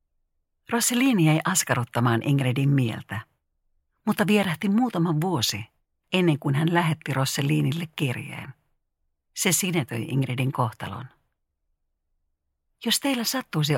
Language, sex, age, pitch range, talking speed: Finnish, female, 50-69, 115-165 Hz, 95 wpm